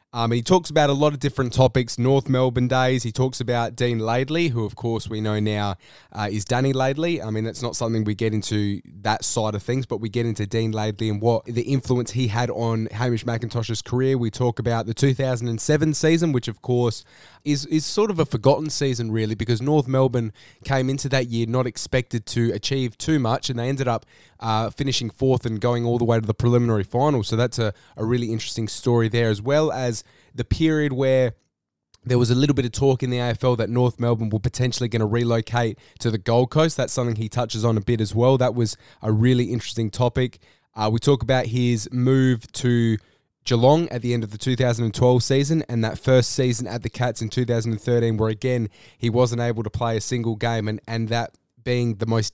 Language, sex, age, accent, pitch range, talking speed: English, male, 20-39, Australian, 110-130 Hz, 220 wpm